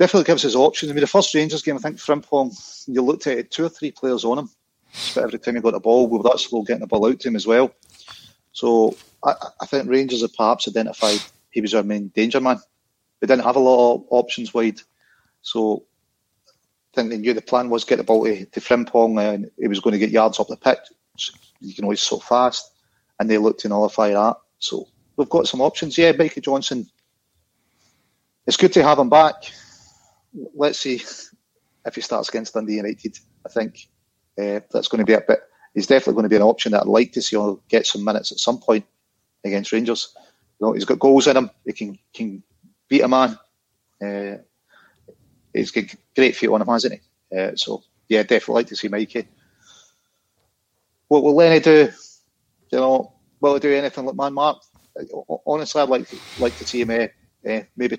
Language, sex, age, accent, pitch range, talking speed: English, male, 30-49, British, 110-140 Hz, 210 wpm